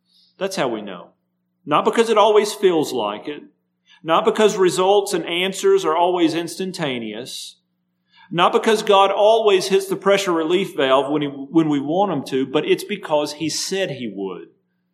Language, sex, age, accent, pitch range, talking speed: English, male, 40-59, American, 125-190 Hz, 170 wpm